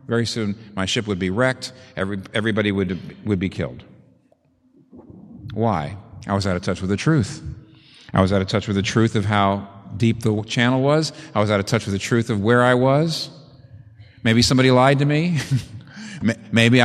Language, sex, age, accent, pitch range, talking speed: English, male, 50-69, American, 105-160 Hz, 190 wpm